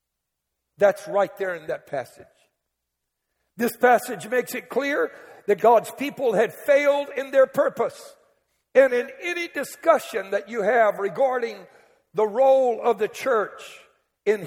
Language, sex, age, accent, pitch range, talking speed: English, male, 60-79, American, 175-265 Hz, 135 wpm